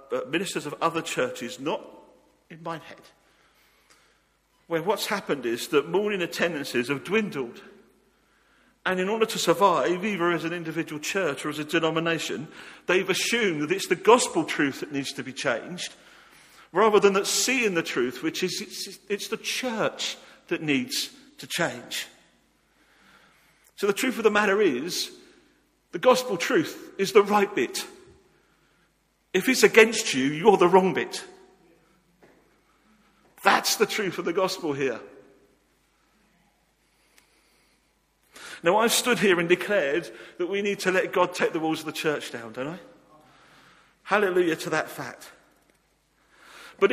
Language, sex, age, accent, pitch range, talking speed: English, male, 50-69, British, 160-210 Hz, 145 wpm